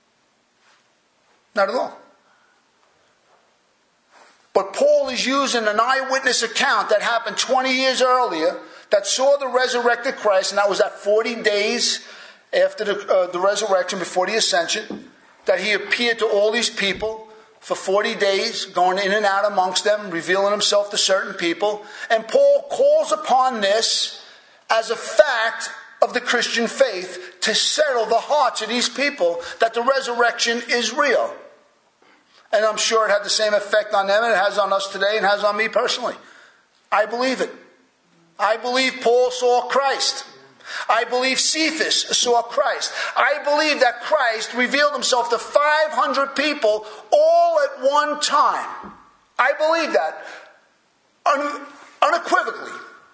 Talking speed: 145 wpm